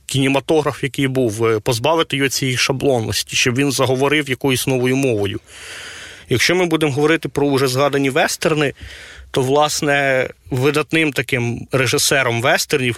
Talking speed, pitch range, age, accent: 125 wpm, 125-150 Hz, 30-49, native